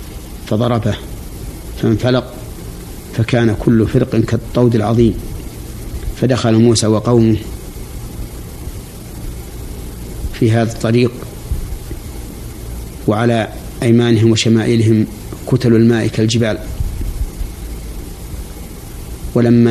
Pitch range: 100-115 Hz